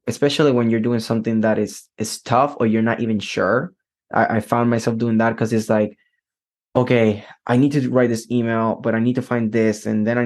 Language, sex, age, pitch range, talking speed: English, male, 10-29, 110-120 Hz, 230 wpm